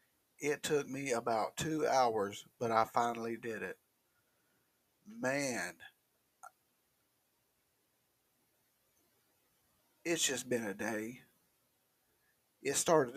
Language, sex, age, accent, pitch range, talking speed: English, male, 50-69, American, 110-125 Hz, 85 wpm